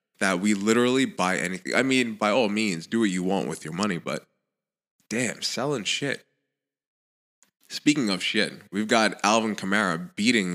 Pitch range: 90-105 Hz